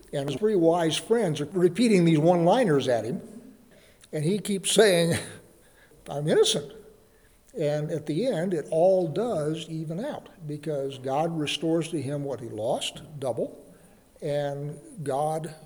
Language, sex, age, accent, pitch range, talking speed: English, male, 60-79, American, 150-180 Hz, 140 wpm